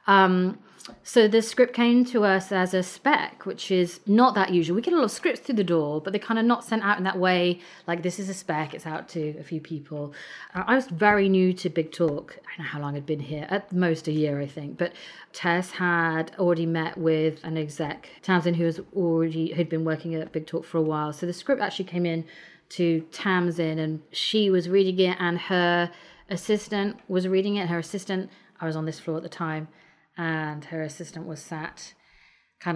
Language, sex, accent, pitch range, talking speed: English, female, British, 160-205 Hz, 225 wpm